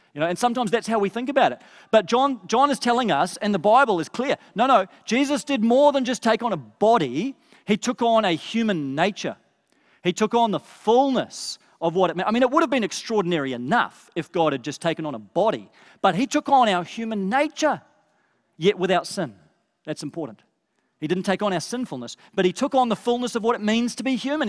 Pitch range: 170-240 Hz